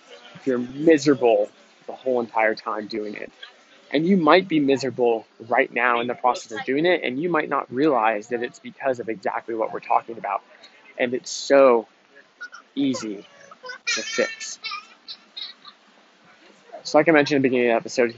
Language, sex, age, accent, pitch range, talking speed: English, male, 20-39, American, 120-140 Hz, 170 wpm